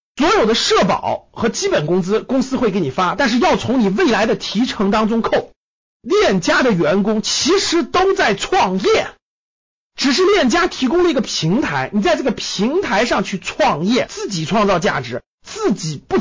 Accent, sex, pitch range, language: native, male, 180-270 Hz, Chinese